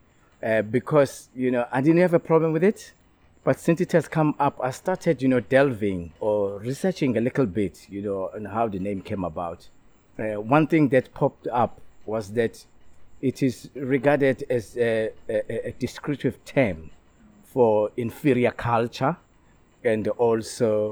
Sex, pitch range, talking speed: male, 105-140 Hz, 165 wpm